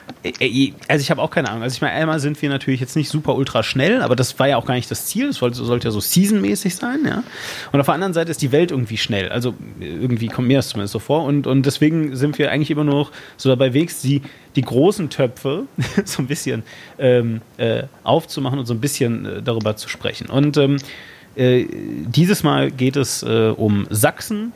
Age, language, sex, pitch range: 30-49, German, male, 120-155 Hz